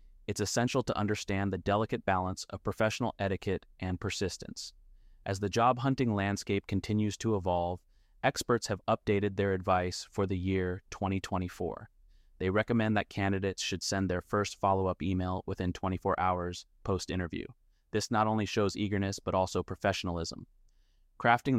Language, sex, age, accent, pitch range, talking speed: Portuguese, male, 30-49, American, 95-105 Hz, 145 wpm